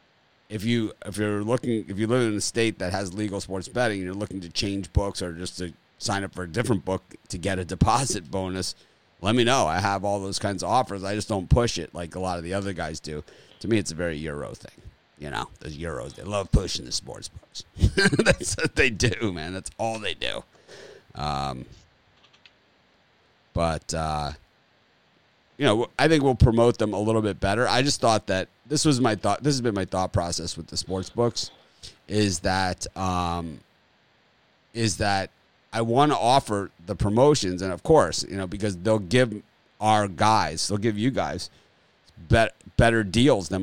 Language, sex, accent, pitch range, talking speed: English, male, American, 90-110 Hz, 200 wpm